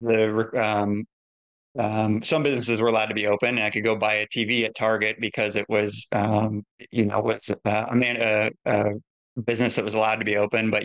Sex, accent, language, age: male, American, English, 20-39